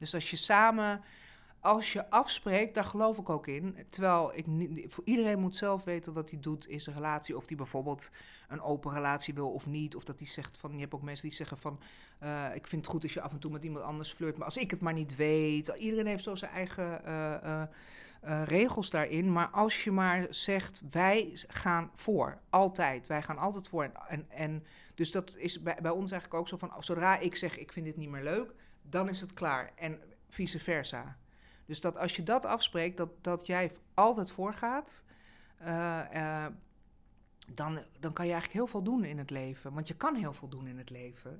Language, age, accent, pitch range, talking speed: Dutch, 50-69, Dutch, 155-195 Hz, 215 wpm